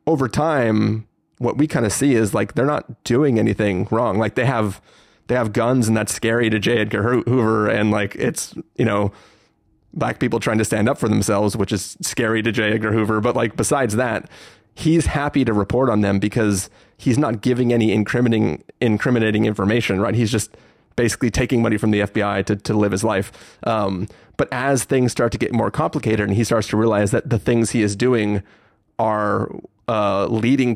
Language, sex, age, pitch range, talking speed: English, male, 30-49, 105-120 Hz, 200 wpm